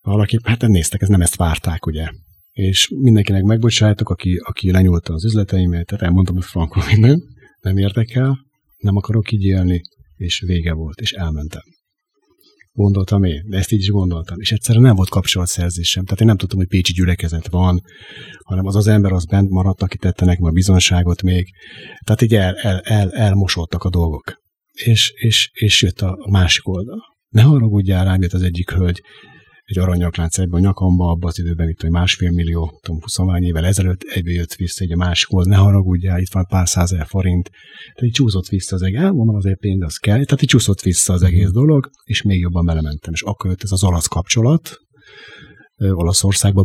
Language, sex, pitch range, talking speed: Hungarian, male, 90-105 Hz, 190 wpm